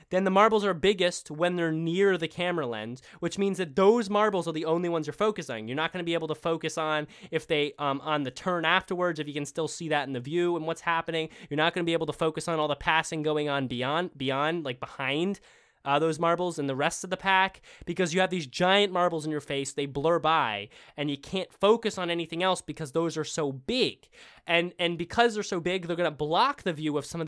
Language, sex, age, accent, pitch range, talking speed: English, male, 20-39, American, 150-190 Hz, 255 wpm